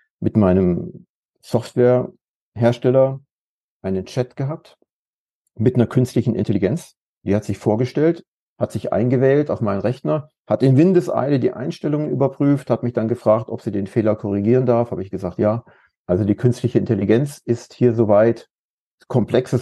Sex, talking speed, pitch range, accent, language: male, 145 wpm, 105-125 Hz, German, German